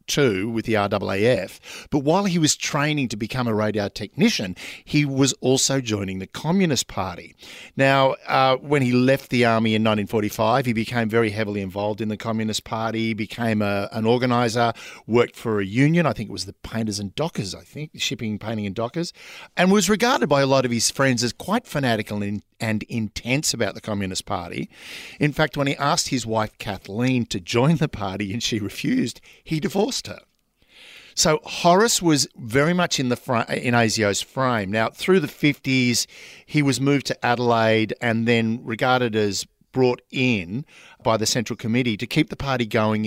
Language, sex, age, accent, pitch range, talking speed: English, male, 50-69, Australian, 105-140 Hz, 180 wpm